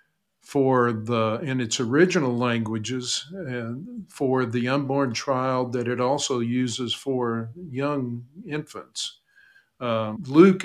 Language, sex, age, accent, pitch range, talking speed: English, male, 50-69, American, 115-145 Hz, 115 wpm